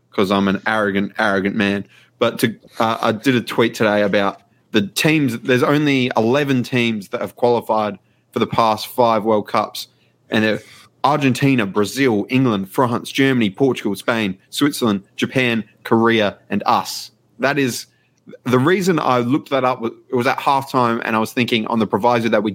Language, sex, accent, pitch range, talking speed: English, male, Australian, 105-130 Hz, 170 wpm